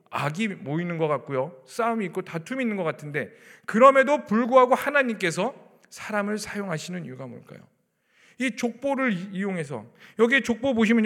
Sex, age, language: male, 40-59, Korean